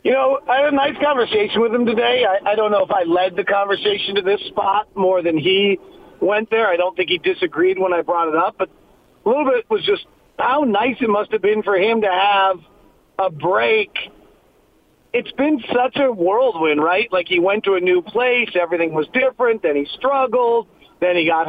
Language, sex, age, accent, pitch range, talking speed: English, male, 40-59, American, 185-245 Hz, 215 wpm